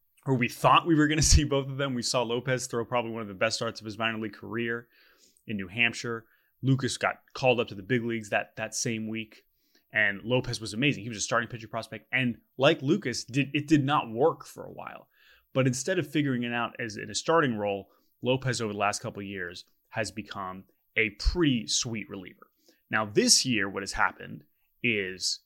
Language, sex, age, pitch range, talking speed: English, male, 20-39, 110-140 Hz, 215 wpm